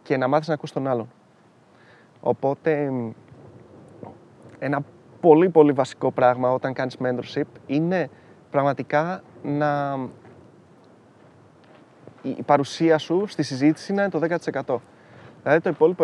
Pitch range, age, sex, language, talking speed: 140-180 Hz, 20-39, male, Greek, 110 wpm